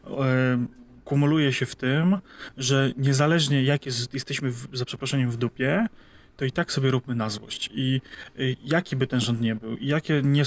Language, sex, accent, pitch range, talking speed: Polish, male, native, 125-145 Hz, 180 wpm